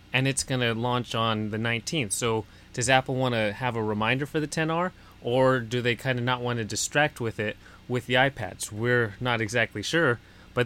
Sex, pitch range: male, 110-145 Hz